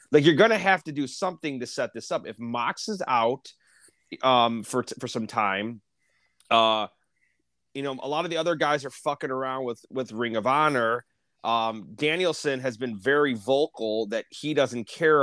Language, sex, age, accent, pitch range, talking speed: English, male, 30-49, American, 115-155 Hz, 195 wpm